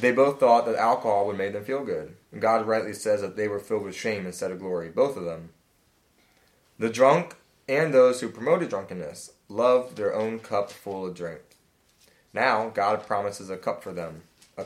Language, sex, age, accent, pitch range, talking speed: English, male, 20-39, American, 95-120 Hz, 195 wpm